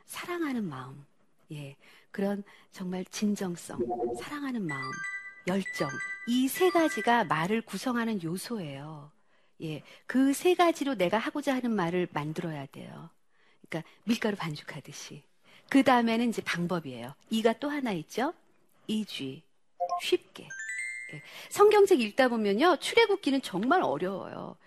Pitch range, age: 180-300 Hz, 40-59